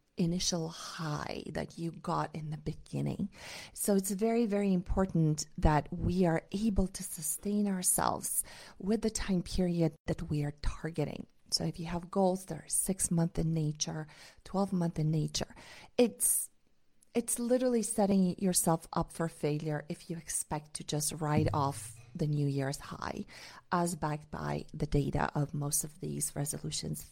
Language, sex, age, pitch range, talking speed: English, female, 40-59, 150-190 Hz, 160 wpm